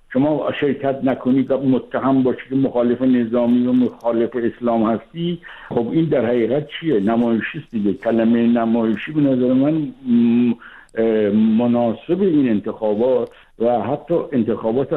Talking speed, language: 115 wpm, Persian